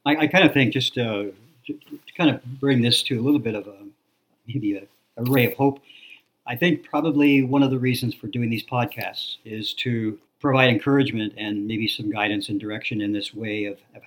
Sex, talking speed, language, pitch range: male, 220 wpm, English, 110-130 Hz